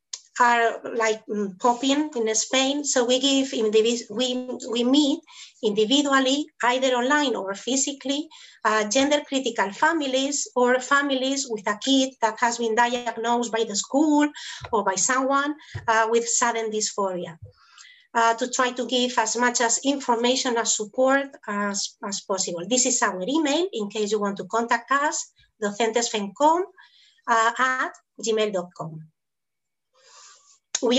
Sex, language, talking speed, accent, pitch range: female, English, 140 wpm, Spanish, 225-275 Hz